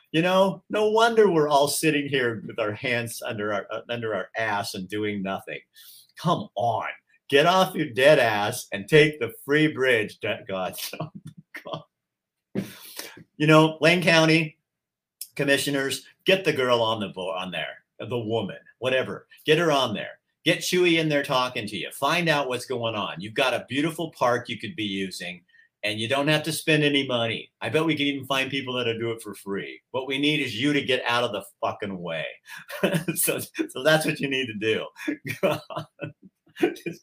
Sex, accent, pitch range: male, American, 110-155 Hz